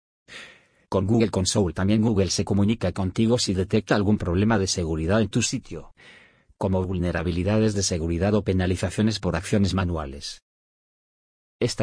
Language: Spanish